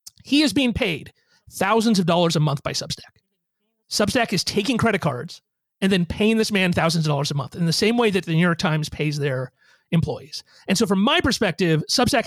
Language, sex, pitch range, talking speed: English, male, 160-215 Hz, 215 wpm